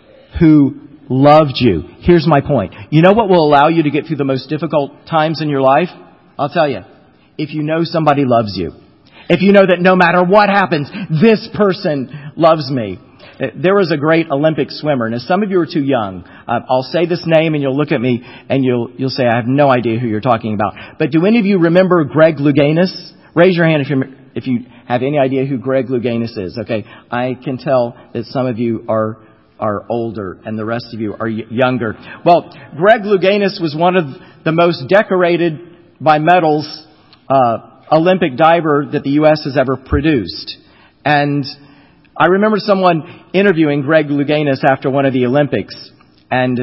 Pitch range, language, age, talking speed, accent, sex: 125-160 Hz, English, 50-69, 195 wpm, American, male